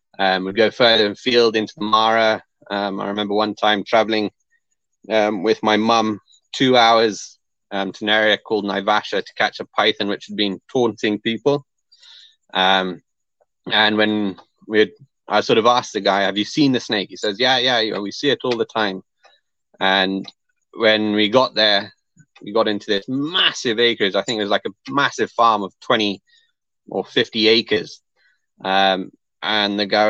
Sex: male